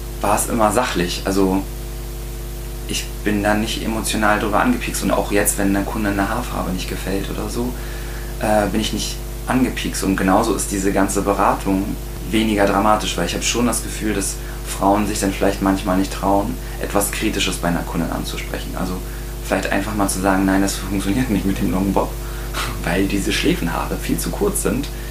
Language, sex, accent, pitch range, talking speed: German, male, German, 100-120 Hz, 185 wpm